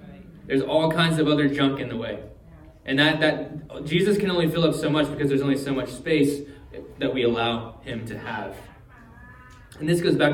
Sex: male